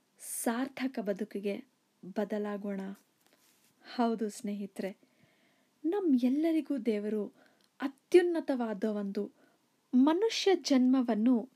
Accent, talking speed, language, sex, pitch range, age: native, 60 wpm, Kannada, female, 210-275 Hz, 20-39